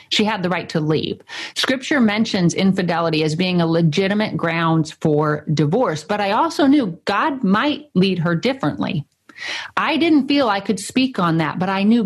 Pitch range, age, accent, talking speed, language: 160-215 Hz, 50-69, American, 180 wpm, English